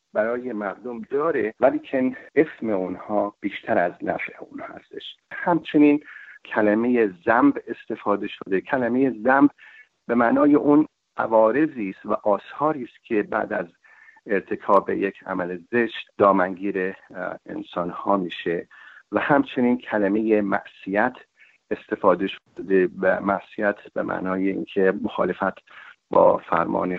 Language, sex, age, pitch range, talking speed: English, male, 50-69, 95-125 Hz, 115 wpm